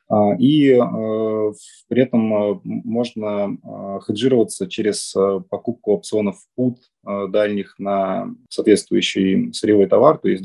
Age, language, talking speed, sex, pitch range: 20-39, Russian, 110 wpm, male, 105-125 Hz